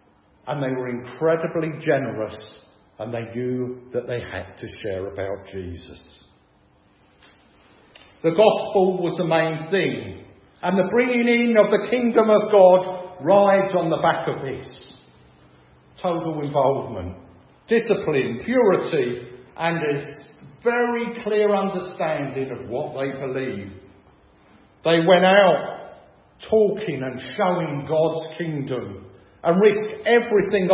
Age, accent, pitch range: 50-69, British, 125-195 Hz